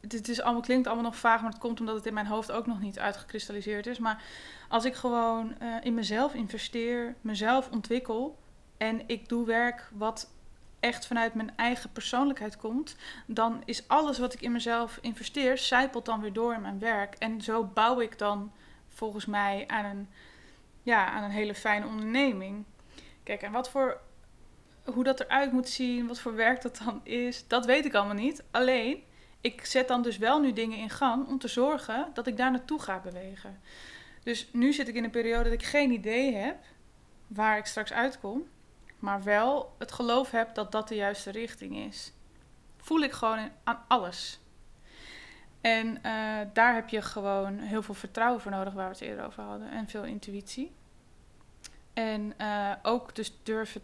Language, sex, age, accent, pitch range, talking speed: Dutch, female, 20-39, Dutch, 210-245 Hz, 185 wpm